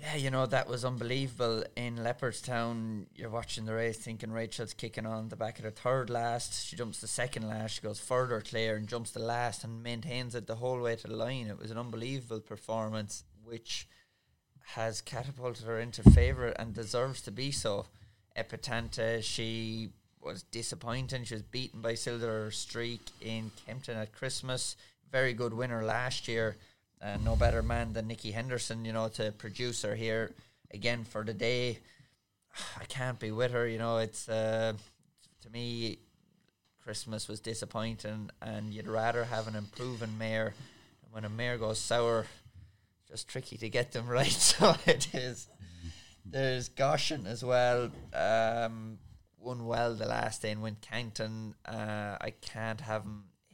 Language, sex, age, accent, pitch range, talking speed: English, male, 20-39, Irish, 110-120 Hz, 170 wpm